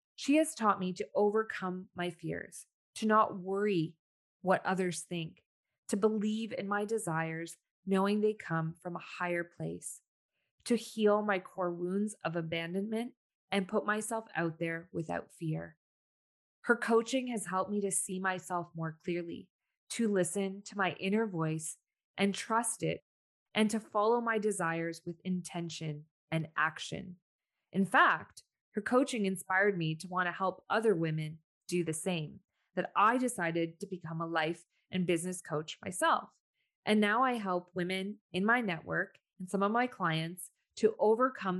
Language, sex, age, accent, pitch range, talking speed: English, female, 20-39, American, 165-210 Hz, 155 wpm